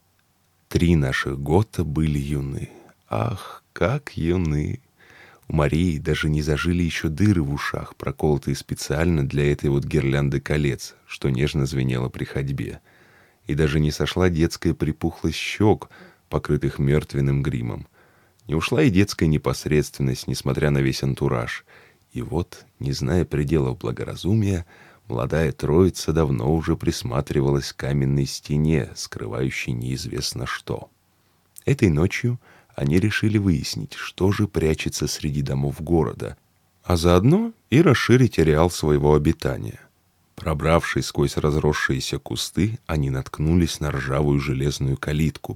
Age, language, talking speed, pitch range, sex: 20-39, Russian, 120 wpm, 70-85 Hz, male